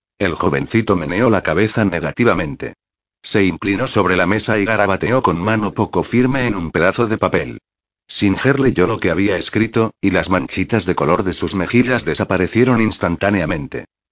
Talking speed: 160 wpm